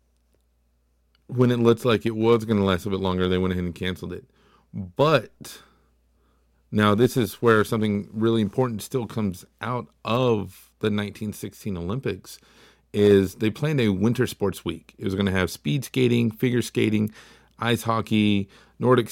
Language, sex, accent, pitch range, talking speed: English, male, American, 95-115 Hz, 165 wpm